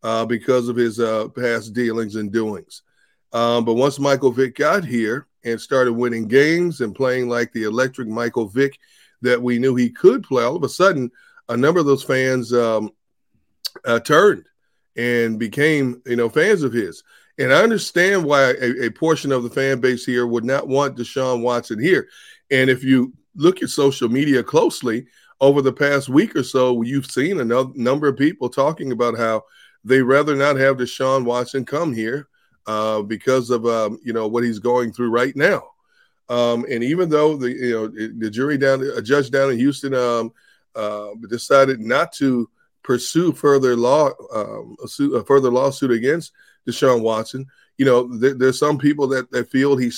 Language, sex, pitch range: English, male, 120-140 Hz